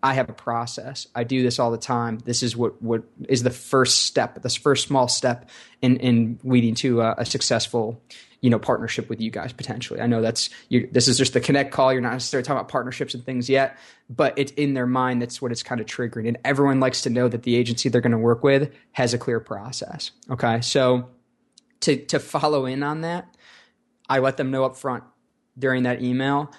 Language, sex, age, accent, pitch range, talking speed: English, male, 20-39, American, 120-135 Hz, 225 wpm